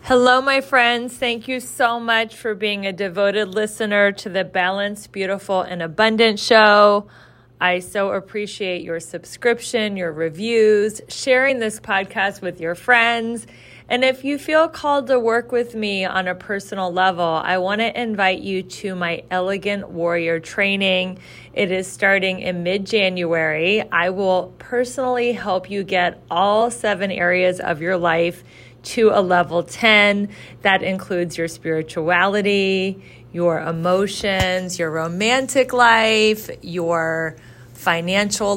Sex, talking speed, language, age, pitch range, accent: female, 135 wpm, English, 30-49, 180-220 Hz, American